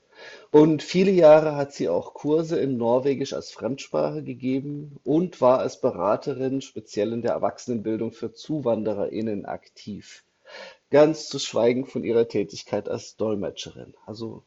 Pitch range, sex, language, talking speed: 120-150 Hz, male, Slovak, 135 wpm